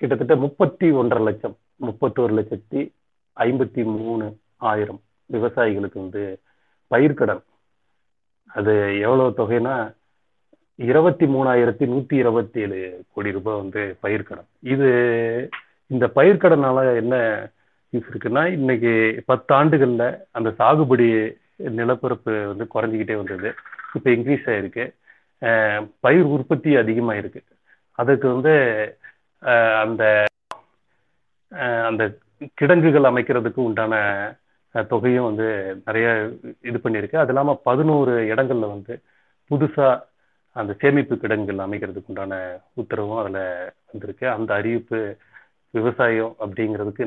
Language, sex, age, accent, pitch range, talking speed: Tamil, male, 30-49, native, 105-130 Hz, 95 wpm